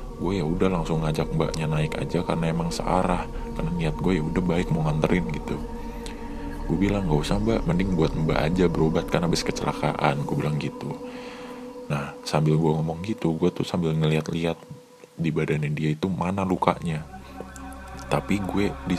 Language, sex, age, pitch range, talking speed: Indonesian, male, 20-39, 80-95 Hz, 170 wpm